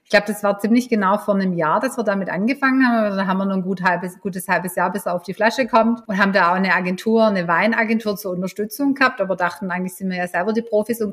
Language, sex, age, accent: German, female, 30-49, German